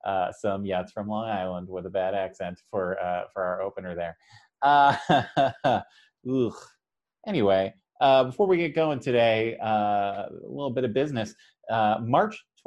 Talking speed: 155 wpm